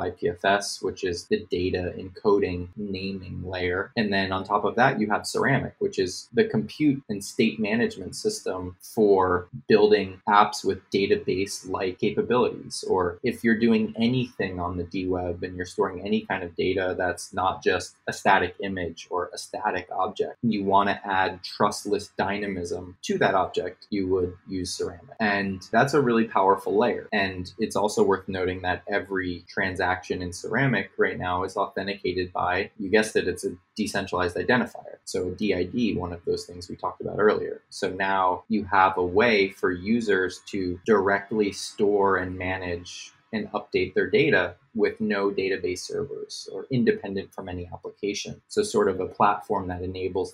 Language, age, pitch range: English, 20-39, 90-120 Hz